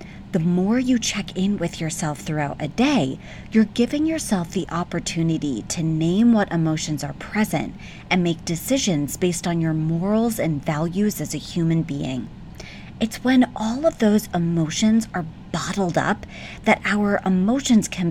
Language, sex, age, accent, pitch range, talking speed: English, female, 30-49, American, 165-215 Hz, 155 wpm